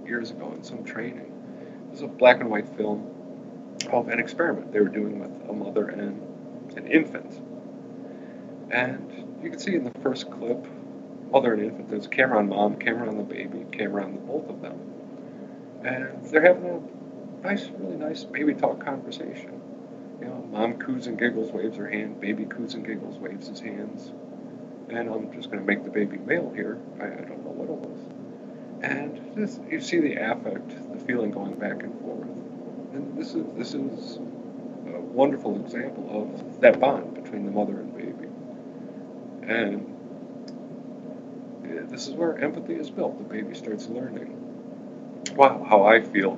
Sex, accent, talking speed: male, American, 170 wpm